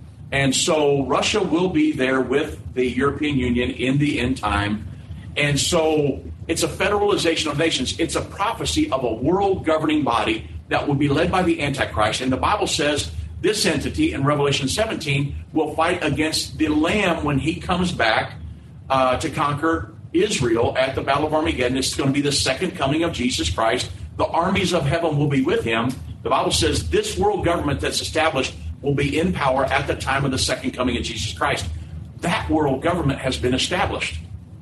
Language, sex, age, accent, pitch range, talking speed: English, male, 50-69, American, 110-160 Hz, 185 wpm